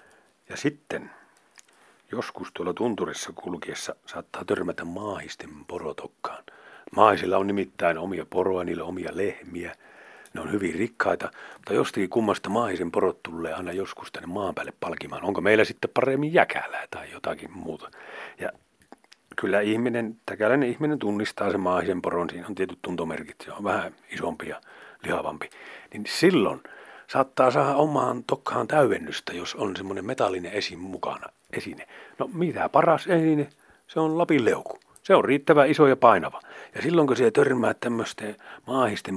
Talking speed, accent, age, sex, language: 145 wpm, native, 40-59, male, Finnish